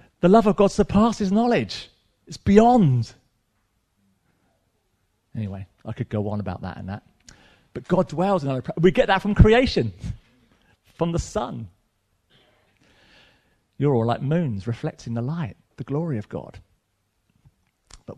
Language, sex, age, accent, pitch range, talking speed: English, male, 40-59, British, 115-185 Hz, 140 wpm